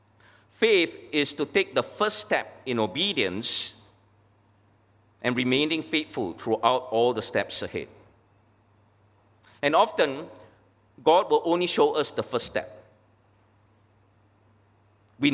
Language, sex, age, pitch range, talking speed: English, male, 50-69, 105-165 Hz, 110 wpm